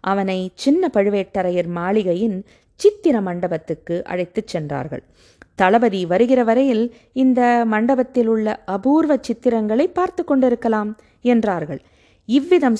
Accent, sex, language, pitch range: native, female, Tamil, 180-245 Hz